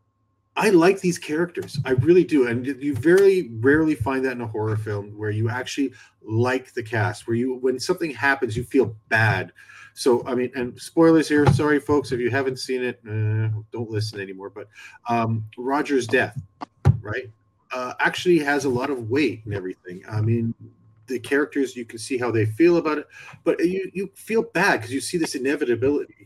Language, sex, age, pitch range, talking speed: English, male, 30-49, 110-135 Hz, 190 wpm